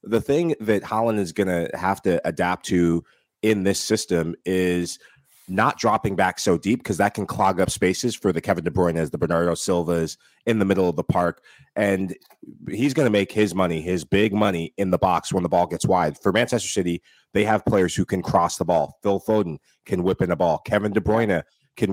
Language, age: English, 30-49